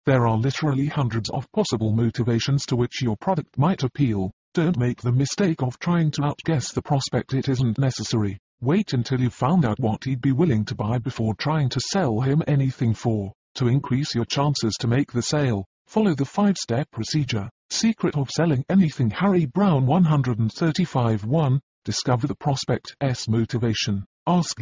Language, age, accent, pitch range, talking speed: English, 40-59, British, 115-150 Hz, 170 wpm